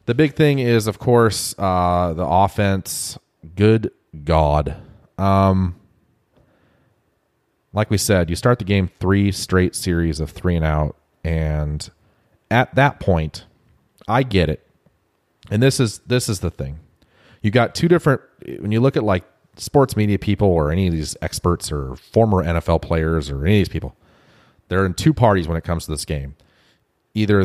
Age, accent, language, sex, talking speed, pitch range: 30-49, American, English, male, 170 wpm, 80-110 Hz